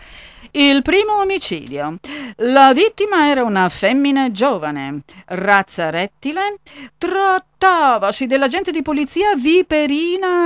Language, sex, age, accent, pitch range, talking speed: Italian, female, 50-69, native, 200-320 Hz, 90 wpm